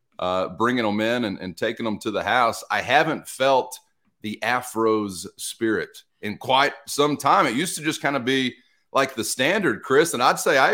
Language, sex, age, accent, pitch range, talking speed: English, male, 30-49, American, 100-140 Hz, 200 wpm